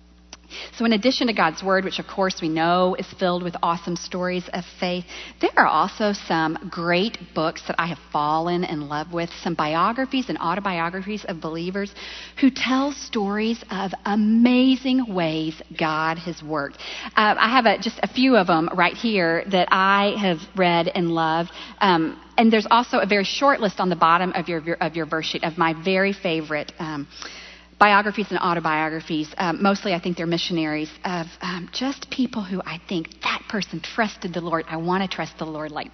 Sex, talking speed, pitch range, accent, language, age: female, 190 wpm, 165-205 Hz, American, English, 40-59